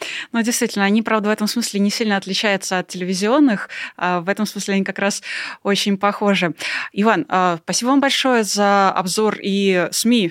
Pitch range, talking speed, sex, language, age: 185-220 Hz, 165 wpm, female, Russian, 20-39